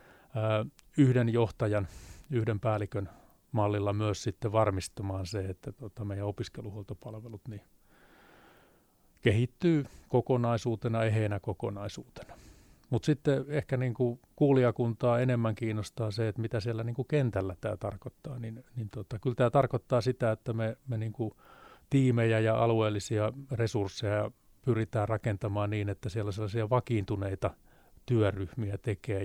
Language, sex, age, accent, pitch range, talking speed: Finnish, male, 30-49, native, 100-120 Hz, 120 wpm